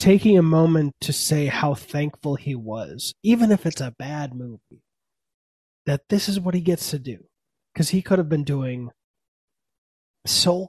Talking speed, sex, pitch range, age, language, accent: 170 wpm, male, 125-160 Hz, 20-39, English, American